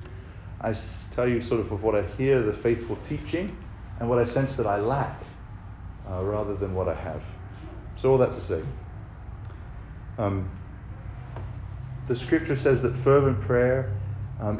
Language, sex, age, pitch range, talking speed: English, male, 40-59, 100-130 Hz, 155 wpm